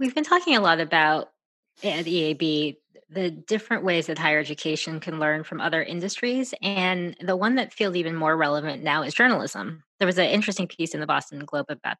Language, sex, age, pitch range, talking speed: English, female, 20-39, 160-195 Hz, 200 wpm